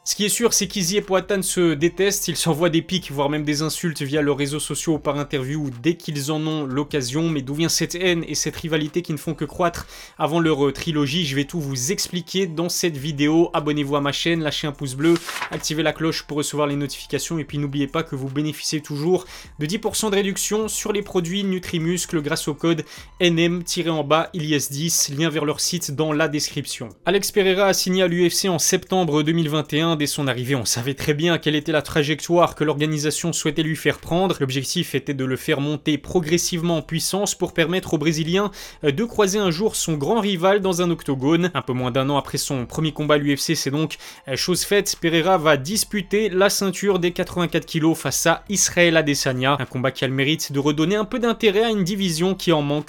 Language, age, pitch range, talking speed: French, 20-39, 145-180 Hz, 215 wpm